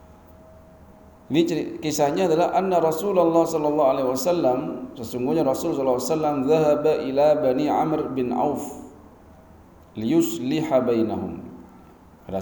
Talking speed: 80 wpm